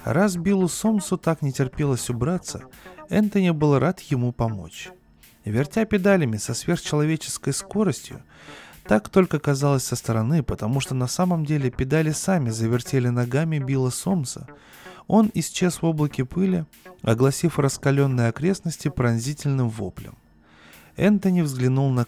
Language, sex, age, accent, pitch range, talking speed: Russian, male, 20-39, native, 120-175 Hz, 125 wpm